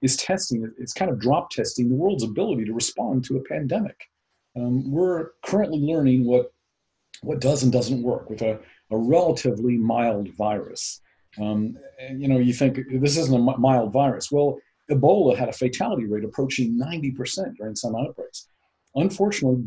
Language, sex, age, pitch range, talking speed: English, male, 50-69, 120-140 Hz, 165 wpm